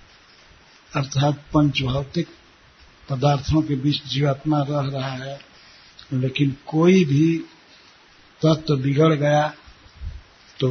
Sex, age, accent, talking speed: male, 60-79, native, 100 wpm